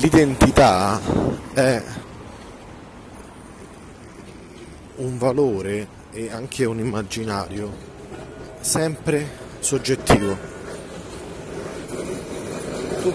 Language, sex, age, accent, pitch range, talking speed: Italian, male, 30-49, native, 115-145 Hz, 50 wpm